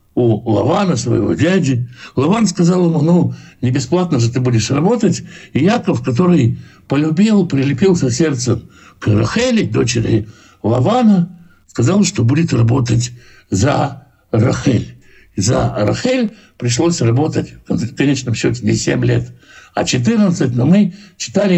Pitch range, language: 125-180 Hz, Russian